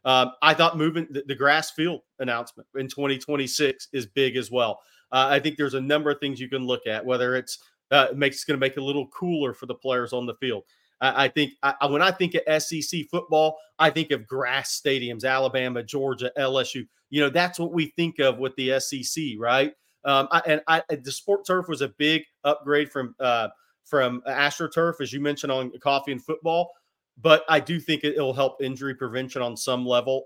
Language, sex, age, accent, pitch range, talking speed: English, male, 30-49, American, 130-155 Hz, 220 wpm